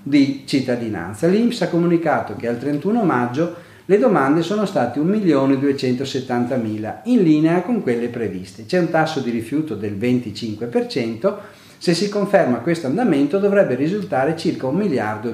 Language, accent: Italian, native